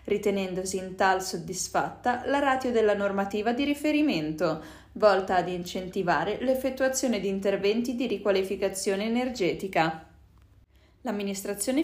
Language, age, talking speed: Italian, 20-39, 100 wpm